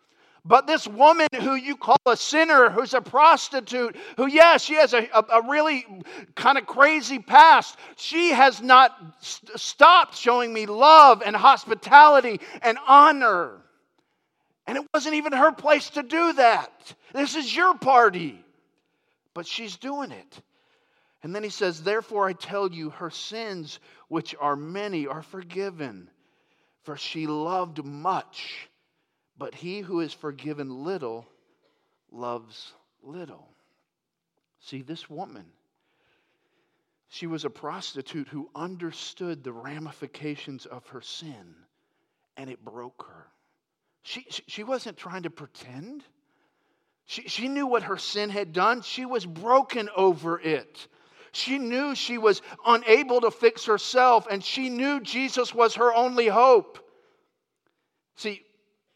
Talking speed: 135 wpm